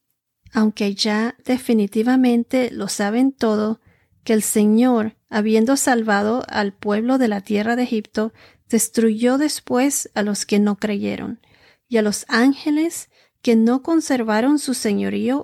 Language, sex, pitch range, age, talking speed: Spanish, female, 210-250 Hz, 40-59, 130 wpm